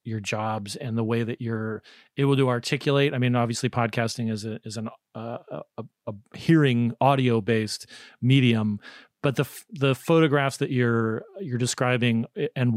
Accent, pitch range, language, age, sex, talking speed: American, 110-140 Hz, English, 40-59, male, 160 wpm